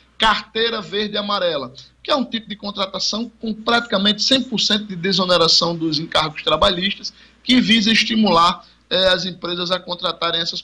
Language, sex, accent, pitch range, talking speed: Portuguese, male, Brazilian, 155-210 Hz, 150 wpm